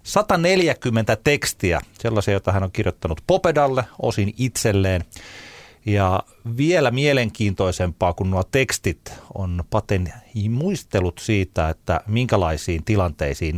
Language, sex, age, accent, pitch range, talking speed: Finnish, male, 30-49, native, 90-115 Hz, 100 wpm